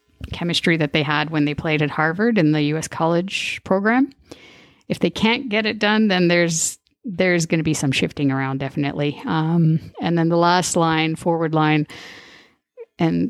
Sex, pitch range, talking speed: female, 155-200 Hz, 175 wpm